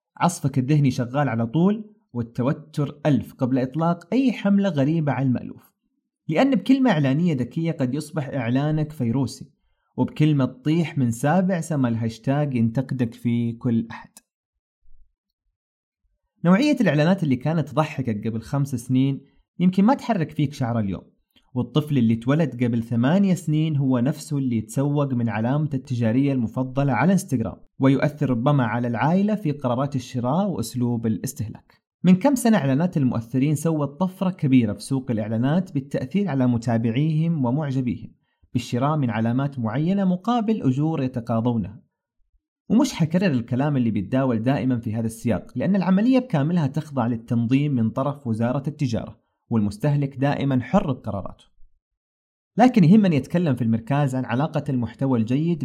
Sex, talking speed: male, 135 wpm